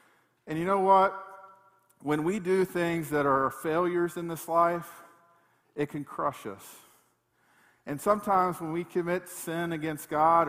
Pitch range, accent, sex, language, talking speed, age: 160-205 Hz, American, male, English, 150 wpm, 50-69